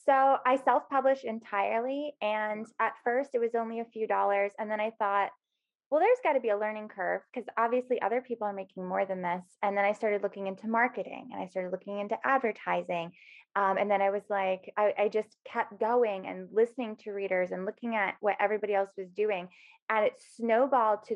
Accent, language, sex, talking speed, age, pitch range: American, English, female, 210 wpm, 20-39, 195-230 Hz